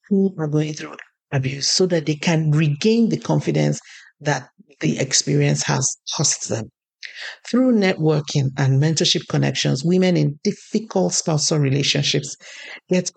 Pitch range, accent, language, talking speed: 145-180 Hz, Nigerian, English, 130 wpm